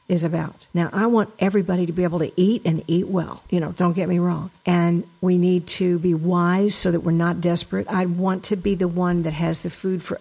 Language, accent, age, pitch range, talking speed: English, American, 50-69, 170-195 Hz, 255 wpm